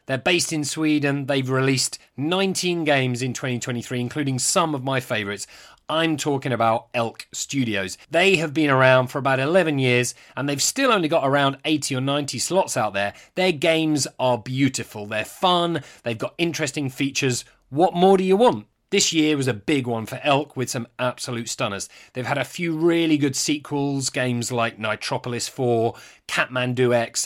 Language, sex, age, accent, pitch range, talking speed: English, male, 30-49, British, 120-155 Hz, 175 wpm